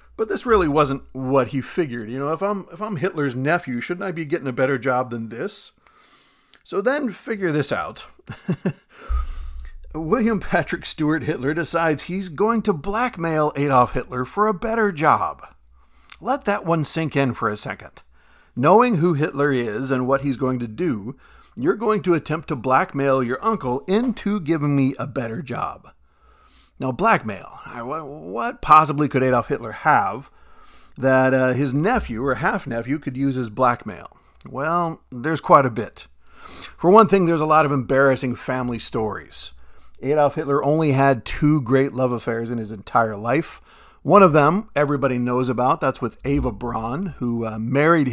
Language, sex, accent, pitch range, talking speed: English, male, American, 125-170 Hz, 165 wpm